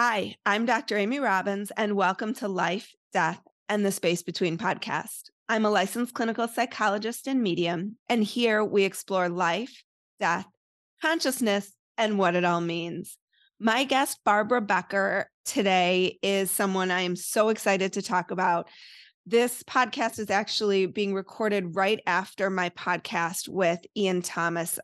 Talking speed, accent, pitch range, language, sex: 145 wpm, American, 180-225 Hz, English, female